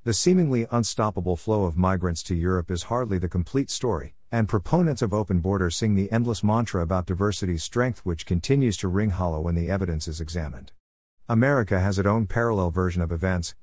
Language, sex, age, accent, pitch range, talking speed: English, male, 50-69, American, 90-115 Hz, 190 wpm